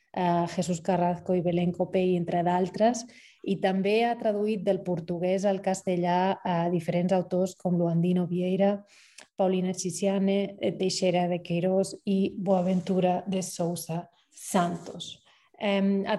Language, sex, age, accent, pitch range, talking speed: Spanish, female, 30-49, Spanish, 175-195 Hz, 120 wpm